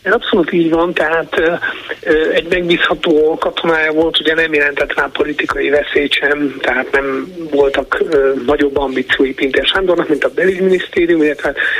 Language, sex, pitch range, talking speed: Hungarian, male, 140-165 Hz, 135 wpm